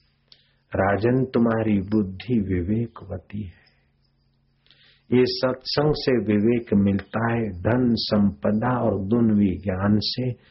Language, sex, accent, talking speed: Hindi, male, native, 95 wpm